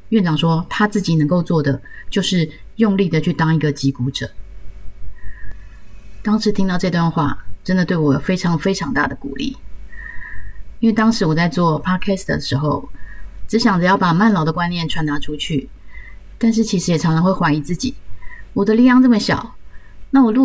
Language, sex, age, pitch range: Chinese, female, 20-39, 140-195 Hz